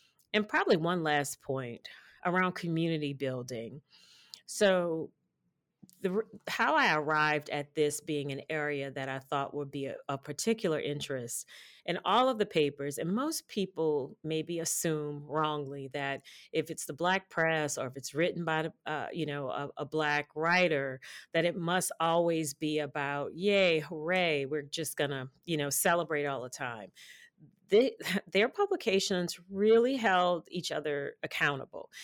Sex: female